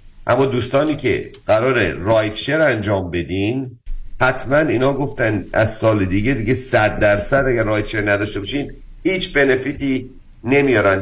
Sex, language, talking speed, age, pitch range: male, Persian, 125 wpm, 50-69, 100-130 Hz